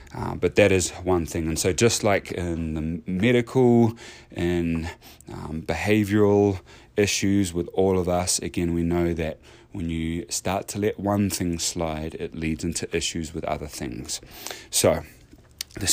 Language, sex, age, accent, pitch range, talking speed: English, male, 30-49, British, 80-95 Hz, 160 wpm